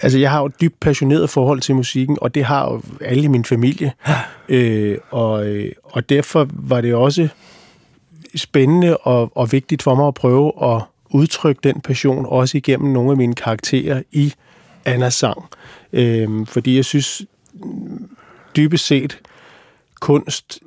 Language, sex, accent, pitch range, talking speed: Danish, male, native, 125-150 Hz, 155 wpm